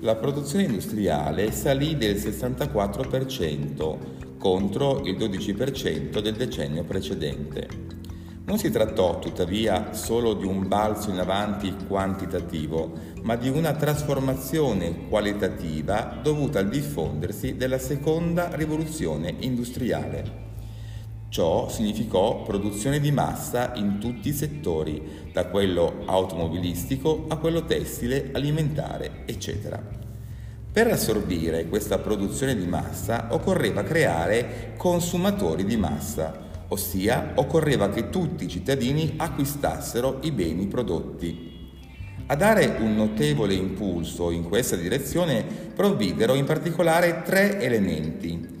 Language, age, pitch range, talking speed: Italian, 40-59, 90-140 Hz, 105 wpm